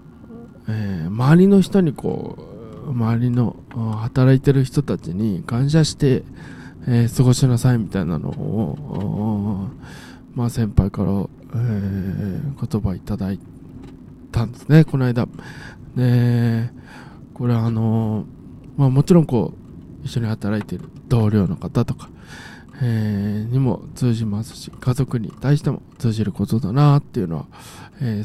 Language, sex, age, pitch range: Japanese, male, 20-39, 110-140 Hz